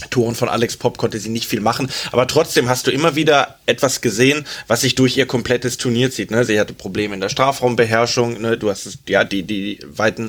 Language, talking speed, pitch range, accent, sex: German, 230 wpm, 115-135 Hz, German, male